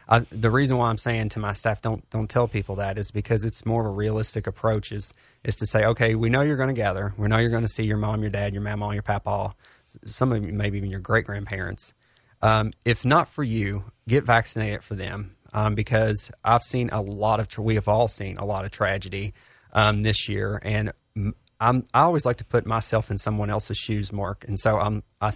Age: 30-49